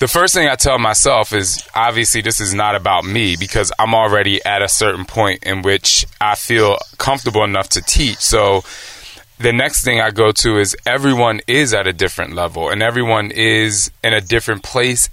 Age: 20-39